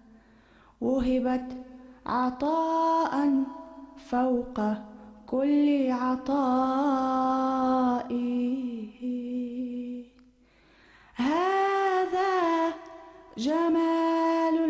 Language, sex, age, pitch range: Urdu, female, 20-39, 245-290 Hz